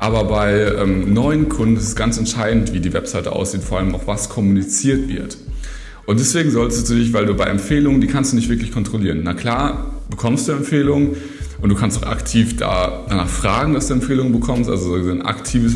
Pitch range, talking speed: 95-115 Hz, 200 wpm